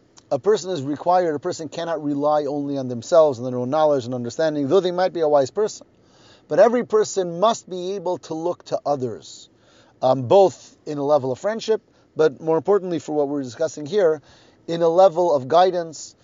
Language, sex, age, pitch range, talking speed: English, male, 30-49, 130-175 Hz, 200 wpm